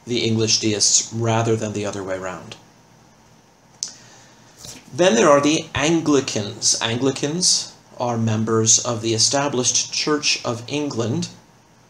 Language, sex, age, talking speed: English, male, 40-59, 110 wpm